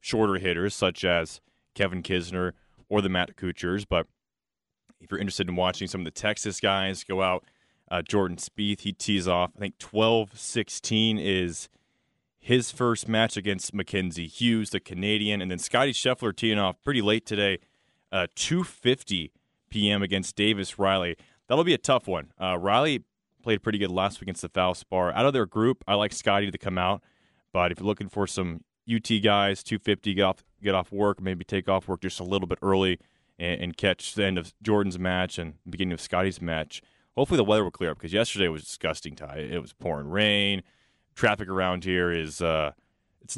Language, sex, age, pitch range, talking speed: English, male, 20-39, 90-105 Hz, 190 wpm